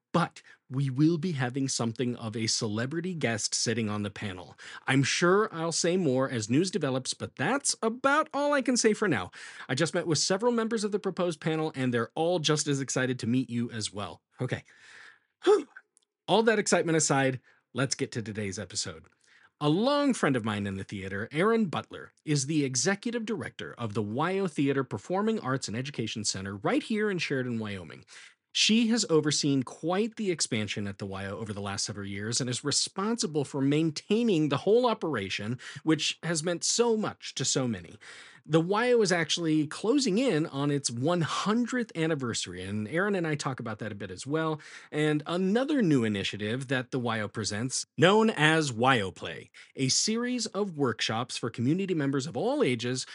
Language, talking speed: English, 185 wpm